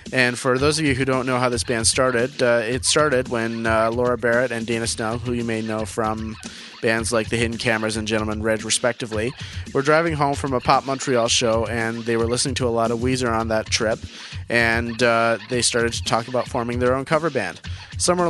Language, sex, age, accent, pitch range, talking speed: English, male, 30-49, American, 110-130 Hz, 225 wpm